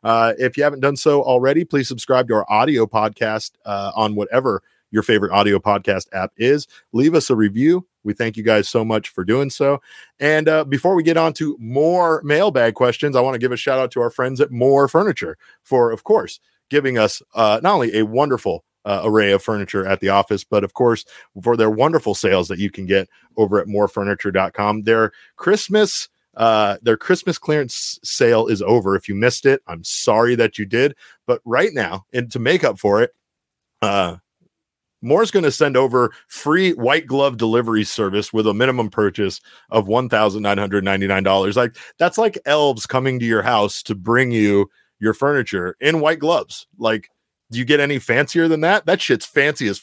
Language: English